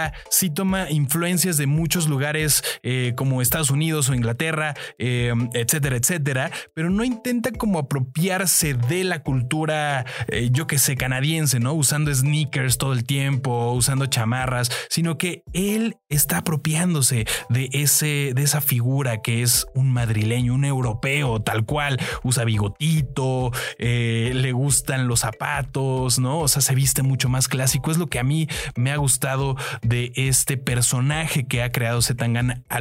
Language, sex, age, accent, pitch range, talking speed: Spanish, male, 20-39, Mexican, 120-150 Hz, 155 wpm